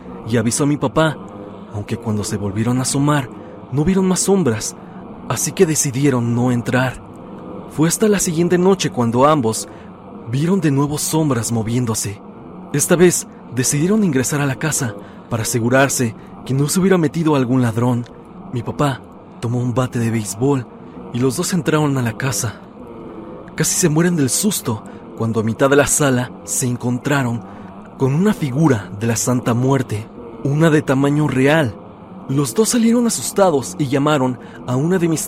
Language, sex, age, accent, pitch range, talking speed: Spanish, male, 30-49, Mexican, 115-150 Hz, 165 wpm